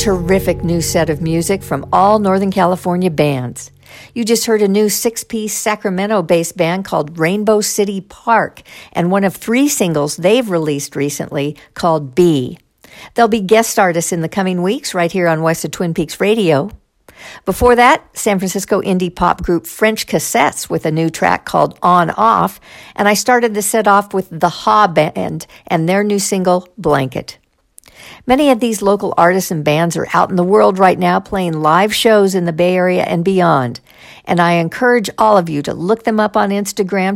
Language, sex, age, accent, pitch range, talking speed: English, female, 50-69, American, 170-210 Hz, 185 wpm